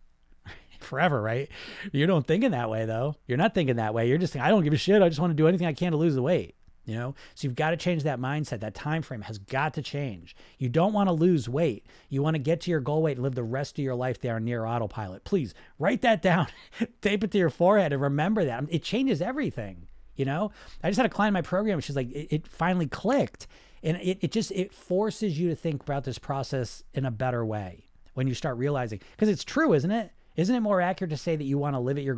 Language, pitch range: English, 120-170 Hz